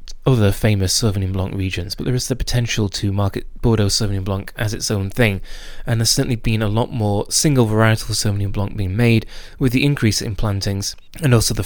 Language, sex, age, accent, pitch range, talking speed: English, male, 20-39, British, 100-120 Hz, 205 wpm